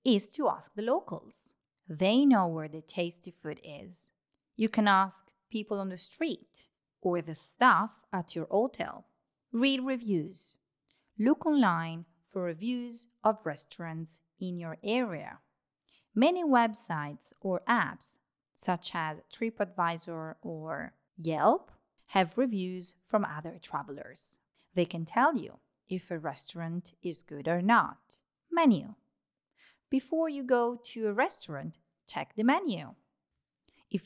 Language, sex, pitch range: Italian, female, 175-245 Hz